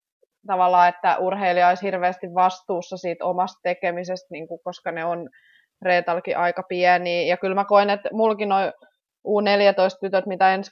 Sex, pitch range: female, 180-205 Hz